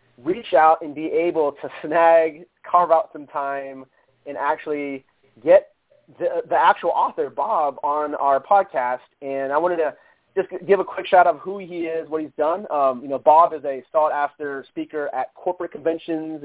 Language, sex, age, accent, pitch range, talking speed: English, male, 30-49, American, 135-165 Hz, 180 wpm